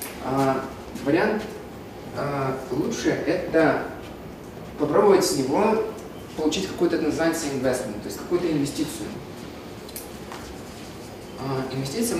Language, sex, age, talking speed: Russian, male, 20-39, 105 wpm